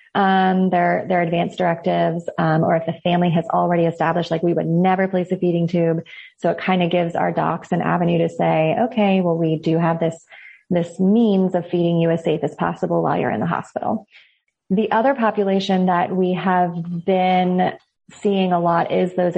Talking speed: 200 wpm